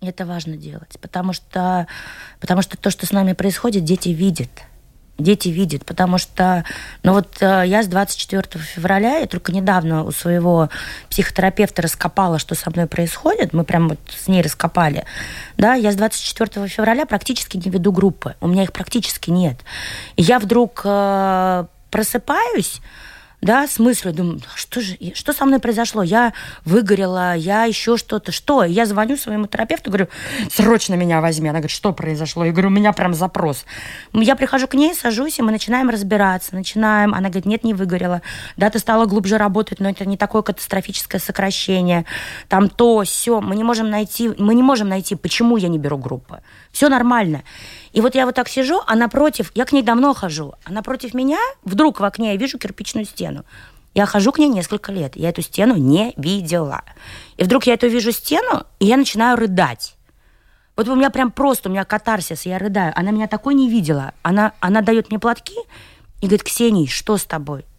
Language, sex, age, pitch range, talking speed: Russian, female, 20-39, 180-230 Hz, 180 wpm